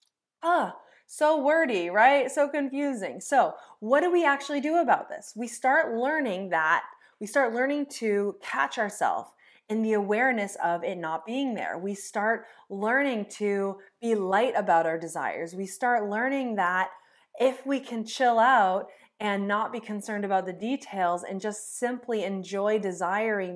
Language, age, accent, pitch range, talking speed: English, 20-39, American, 190-255 Hz, 160 wpm